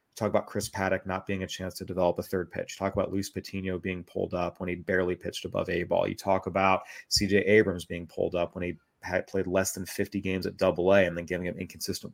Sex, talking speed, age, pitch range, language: male, 250 wpm, 30-49, 95-115 Hz, English